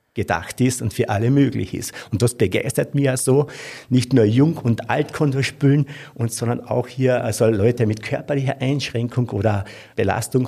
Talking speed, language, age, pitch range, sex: 170 wpm, German, 50-69, 110-130 Hz, male